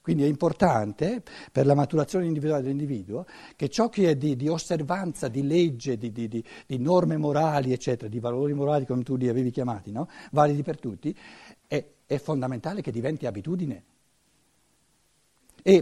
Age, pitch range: 60-79, 125-180 Hz